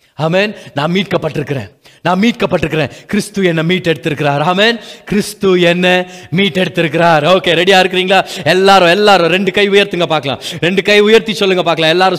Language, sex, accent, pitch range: Tamil, male, native, 180-240 Hz